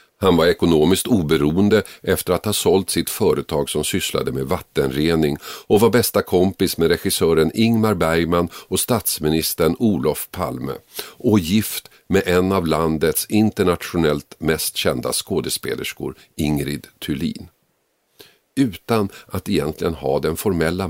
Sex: male